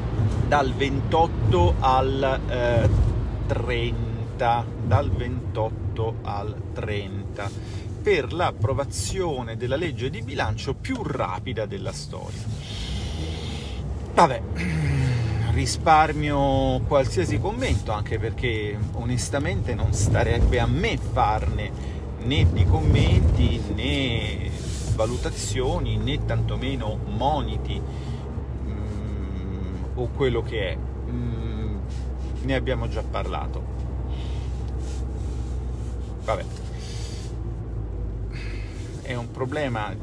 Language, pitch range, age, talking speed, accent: Italian, 95-125 Hz, 40-59, 80 wpm, native